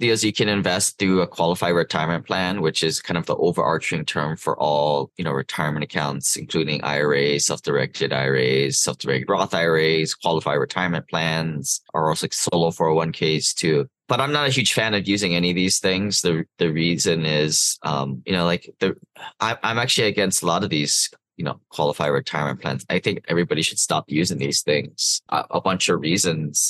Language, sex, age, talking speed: English, male, 20-39, 200 wpm